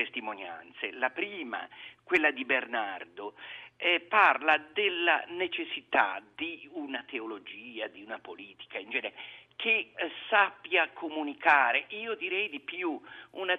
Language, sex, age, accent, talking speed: Italian, male, 50-69, native, 120 wpm